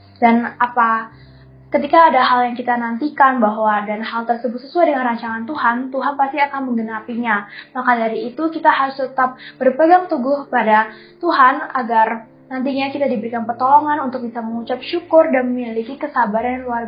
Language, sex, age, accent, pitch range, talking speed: Indonesian, female, 10-29, native, 220-265 Hz, 155 wpm